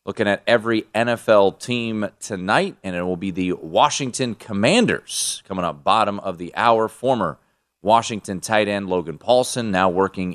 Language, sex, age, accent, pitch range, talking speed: English, male, 30-49, American, 90-120 Hz, 155 wpm